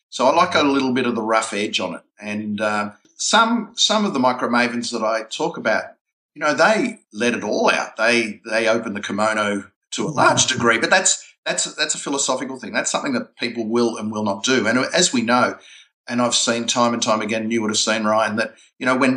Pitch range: 110-135 Hz